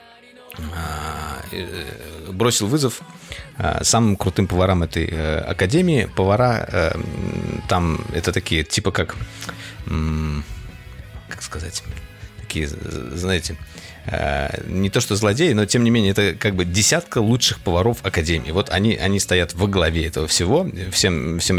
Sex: male